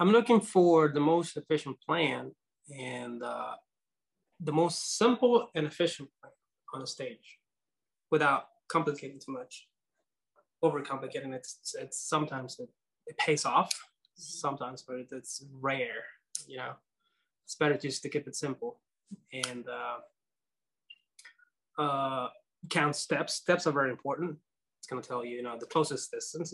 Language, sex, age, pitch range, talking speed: English, male, 20-39, 135-195 Hz, 140 wpm